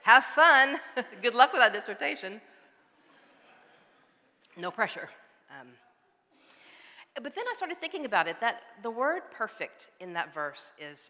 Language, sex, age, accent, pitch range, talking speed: English, female, 50-69, American, 165-220 Hz, 135 wpm